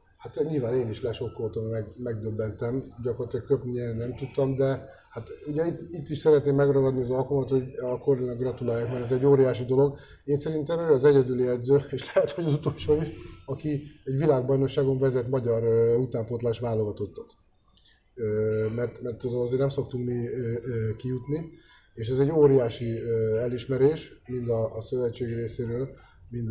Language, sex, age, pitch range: Hungarian, male, 30-49, 120-145 Hz